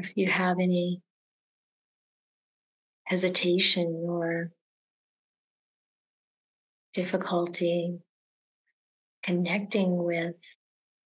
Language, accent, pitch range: English, American, 170-185 Hz